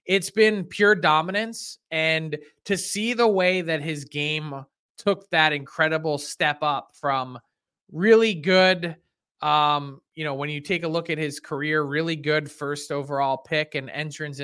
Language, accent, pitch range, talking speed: English, American, 140-180 Hz, 160 wpm